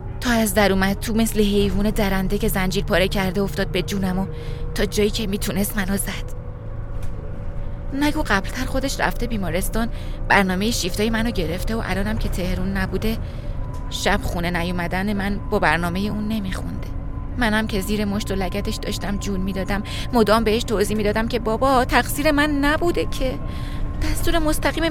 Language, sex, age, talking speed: Persian, female, 20-39, 155 wpm